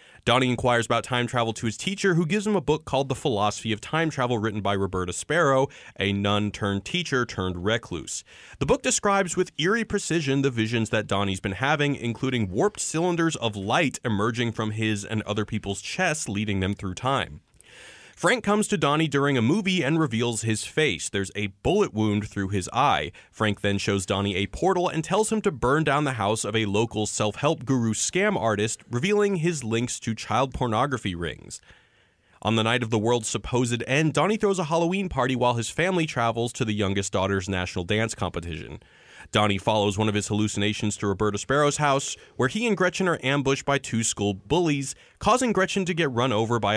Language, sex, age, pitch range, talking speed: English, male, 30-49, 105-150 Hz, 200 wpm